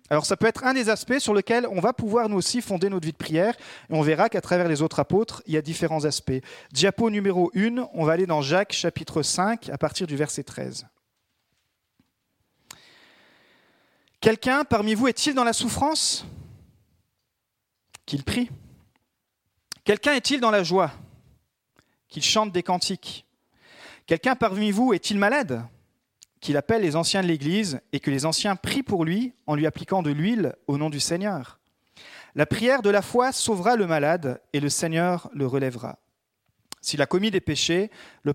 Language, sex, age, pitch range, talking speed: French, male, 40-59, 150-215 Hz, 175 wpm